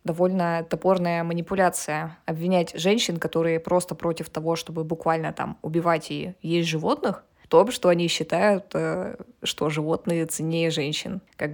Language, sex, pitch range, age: Russian, female, 165-185 Hz, 20-39